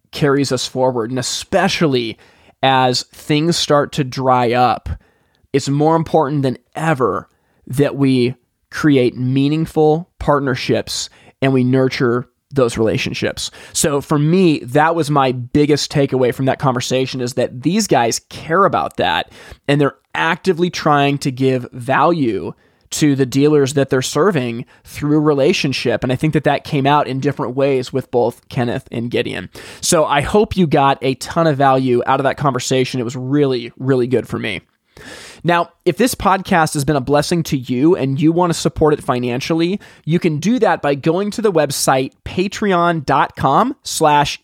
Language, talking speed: English, 165 wpm